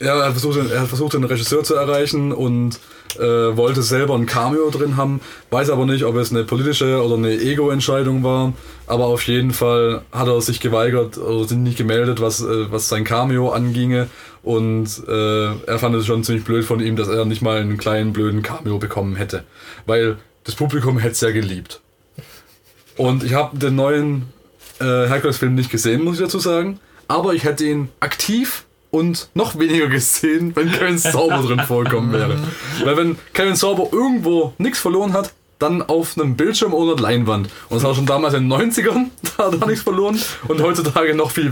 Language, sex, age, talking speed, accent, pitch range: German, male, 20-39, 195 wpm, German, 115-160 Hz